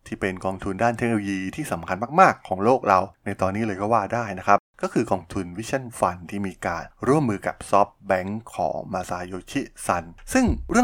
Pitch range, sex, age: 95-115 Hz, male, 20-39